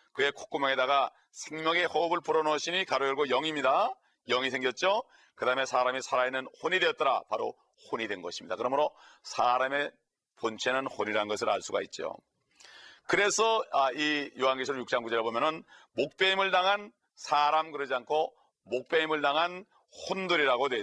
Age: 40-59